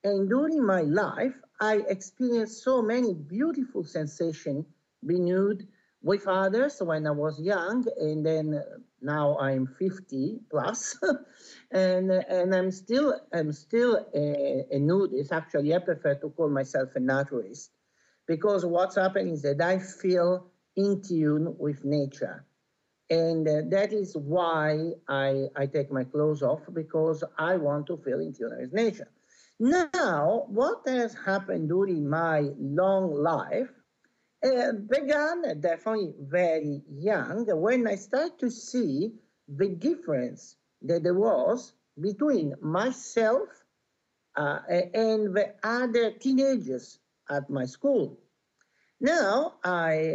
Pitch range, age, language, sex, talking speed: 150-220 Hz, 50-69, English, male, 130 wpm